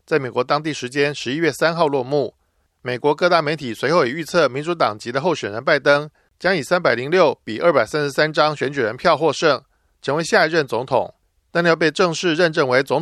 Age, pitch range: 50-69, 130-170 Hz